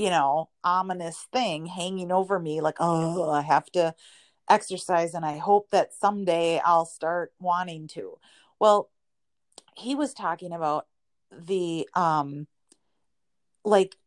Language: English